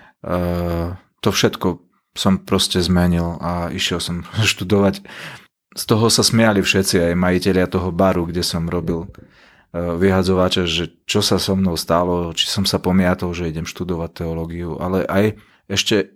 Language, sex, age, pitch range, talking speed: Slovak, male, 30-49, 90-100 Hz, 150 wpm